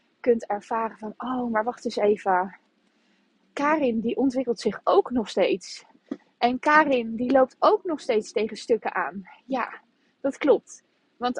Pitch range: 210-260 Hz